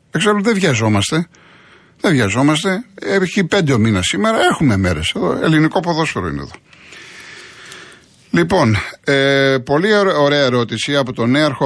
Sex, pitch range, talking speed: male, 105-140 Hz, 125 wpm